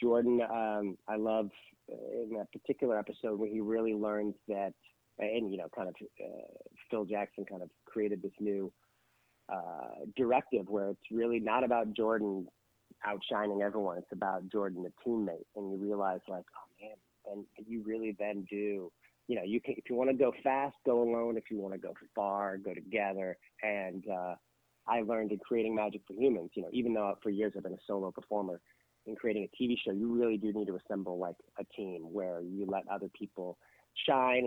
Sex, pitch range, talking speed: male, 100-115 Hz, 195 wpm